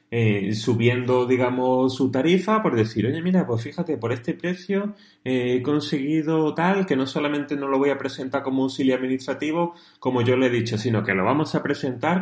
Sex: male